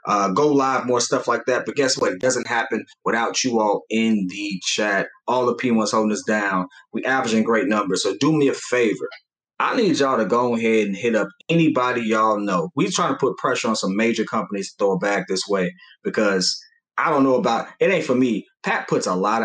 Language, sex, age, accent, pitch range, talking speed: English, male, 20-39, American, 115-160 Hz, 235 wpm